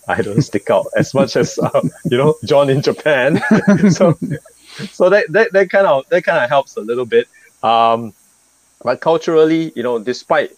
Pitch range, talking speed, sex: 95-140 Hz, 185 wpm, male